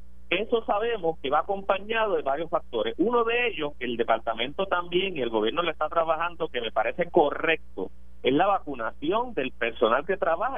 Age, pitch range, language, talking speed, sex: 50-69, 120-180 Hz, Spanish, 180 wpm, male